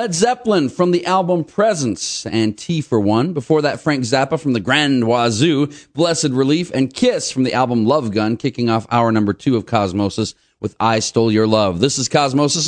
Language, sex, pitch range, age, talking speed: English, male, 110-155 Hz, 40-59, 200 wpm